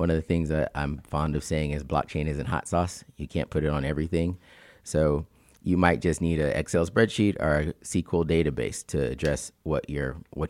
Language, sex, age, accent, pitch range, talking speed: English, male, 30-49, American, 75-90 Hz, 210 wpm